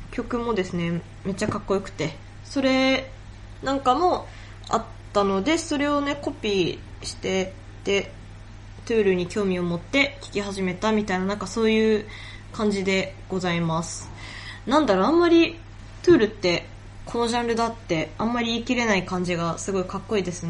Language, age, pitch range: Japanese, 20-39, 170-250 Hz